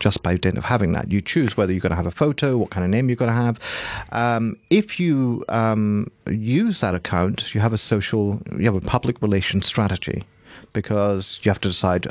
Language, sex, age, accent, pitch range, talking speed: English, male, 40-59, British, 100-120 Hz, 225 wpm